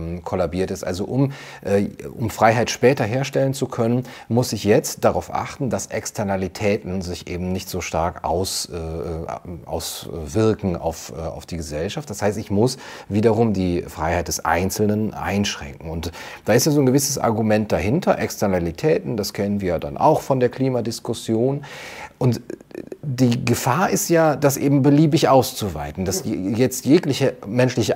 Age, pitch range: 30-49, 95-125 Hz